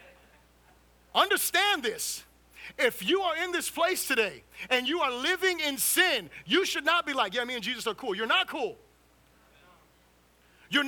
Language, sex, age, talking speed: English, male, 30-49, 165 wpm